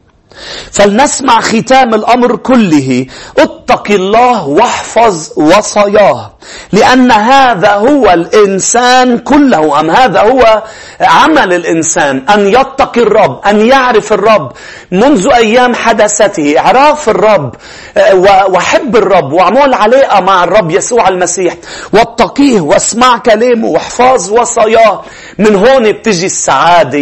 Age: 40-59